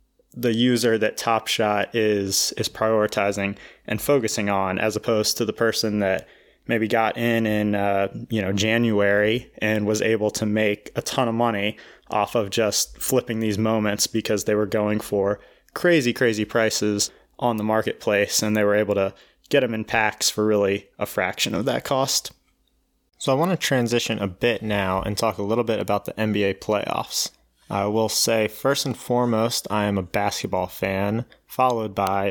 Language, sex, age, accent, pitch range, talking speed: English, male, 20-39, American, 100-115 Hz, 180 wpm